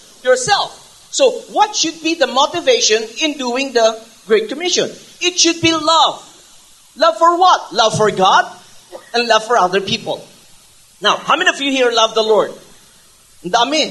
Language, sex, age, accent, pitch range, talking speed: English, male, 40-59, Filipino, 195-300 Hz, 160 wpm